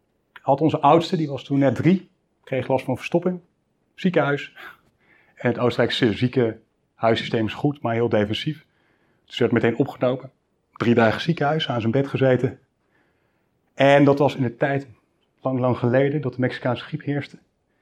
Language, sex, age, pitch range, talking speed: Dutch, male, 30-49, 115-150 Hz, 160 wpm